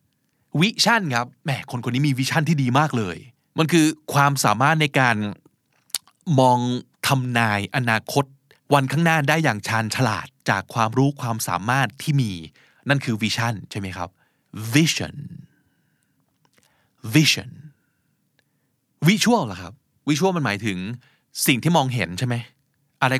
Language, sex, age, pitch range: Thai, male, 20-39, 115-150 Hz